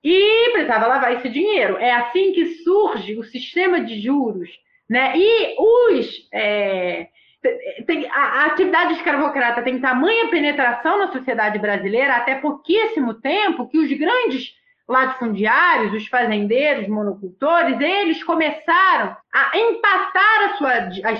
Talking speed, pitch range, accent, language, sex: 115 wpm, 230-365 Hz, Brazilian, Portuguese, female